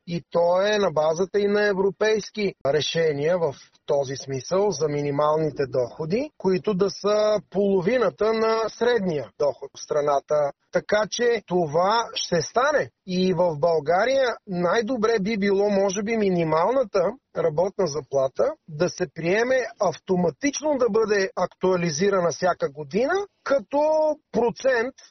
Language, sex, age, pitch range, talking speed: Bulgarian, male, 30-49, 175-225 Hz, 120 wpm